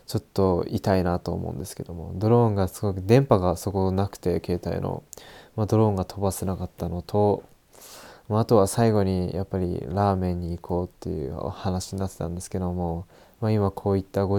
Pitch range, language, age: 95-110 Hz, Japanese, 20-39